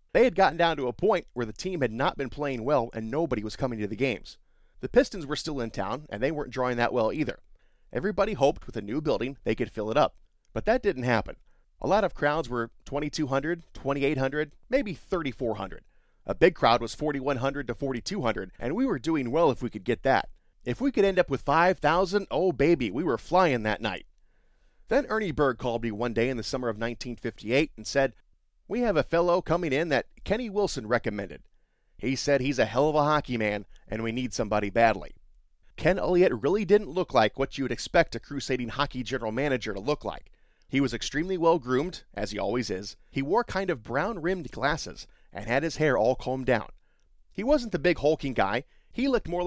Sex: male